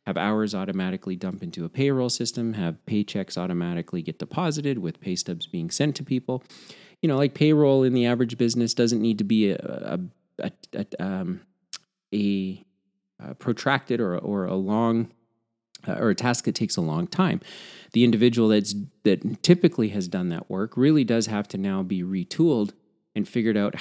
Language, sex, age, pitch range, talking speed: English, male, 30-49, 100-160 Hz, 180 wpm